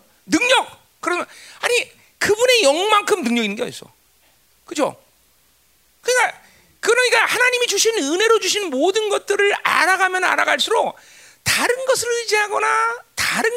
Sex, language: male, Korean